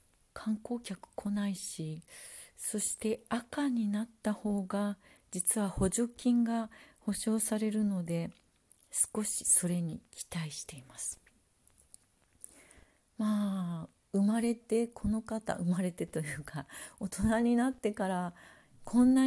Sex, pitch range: female, 170-220 Hz